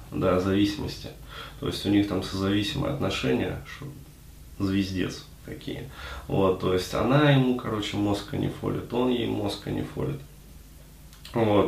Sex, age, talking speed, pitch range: male, 20-39, 140 wpm, 95-125 Hz